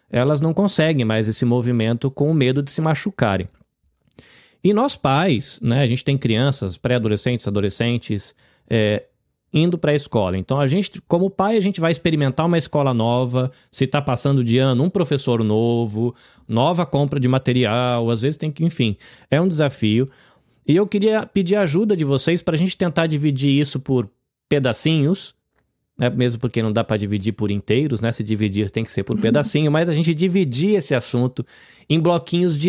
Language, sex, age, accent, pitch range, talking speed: Portuguese, male, 20-39, Brazilian, 115-155 Hz, 185 wpm